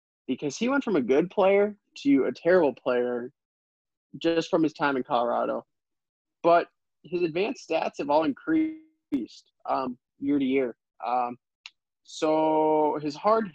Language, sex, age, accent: English, male, 20-39, American